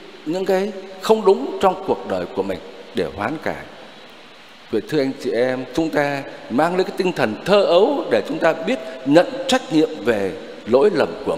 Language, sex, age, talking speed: Vietnamese, male, 60-79, 195 wpm